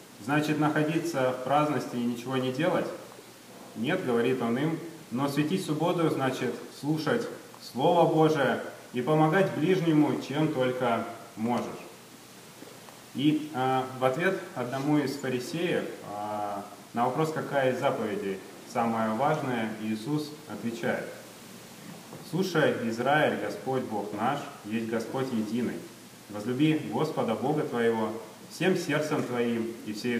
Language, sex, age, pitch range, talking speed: Russian, male, 30-49, 115-150 Hz, 115 wpm